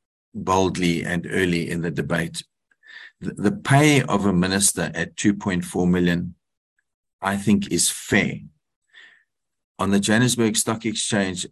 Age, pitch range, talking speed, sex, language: 50-69, 90-120 Hz, 120 wpm, male, English